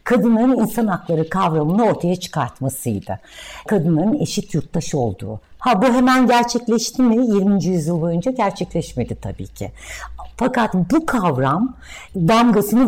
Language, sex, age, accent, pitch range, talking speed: Turkish, female, 60-79, native, 155-230 Hz, 115 wpm